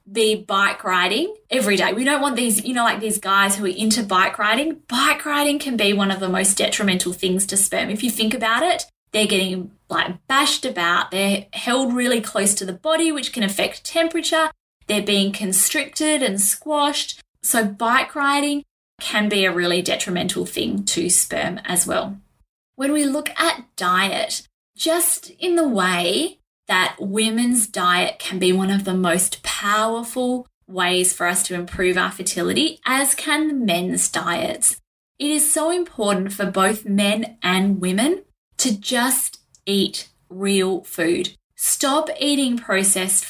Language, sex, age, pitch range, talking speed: English, female, 20-39, 195-290 Hz, 160 wpm